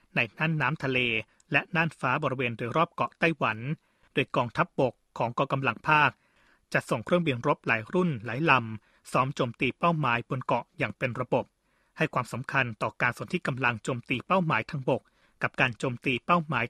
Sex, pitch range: male, 125-160 Hz